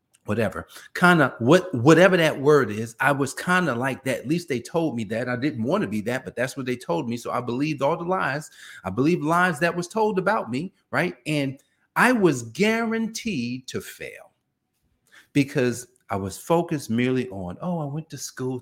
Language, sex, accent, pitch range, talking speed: English, male, American, 100-145 Hz, 205 wpm